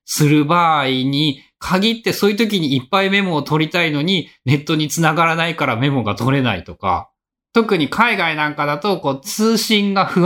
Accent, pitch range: native, 125-195 Hz